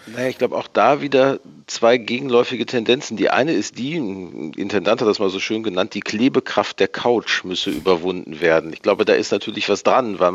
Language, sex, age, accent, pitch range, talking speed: German, male, 40-59, German, 95-120 Hz, 210 wpm